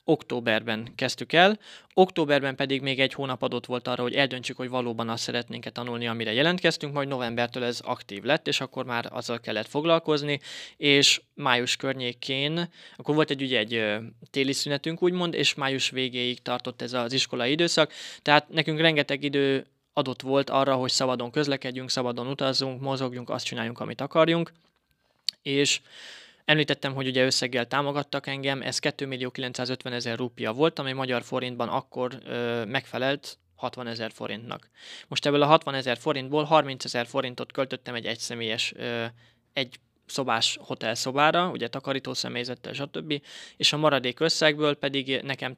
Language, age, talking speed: Hungarian, 20-39, 140 wpm